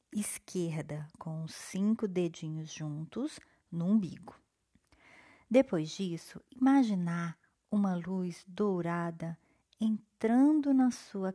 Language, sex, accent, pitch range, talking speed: Portuguese, female, Brazilian, 165-210 Hz, 85 wpm